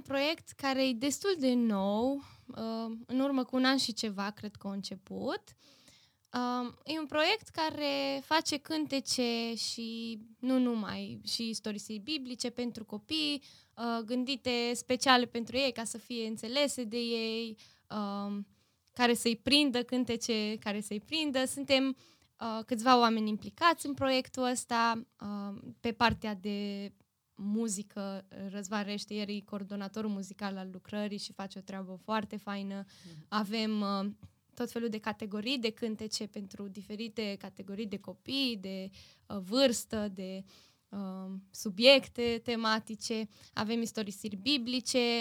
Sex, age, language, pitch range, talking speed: female, 10-29, Romanian, 205-250 Hz, 135 wpm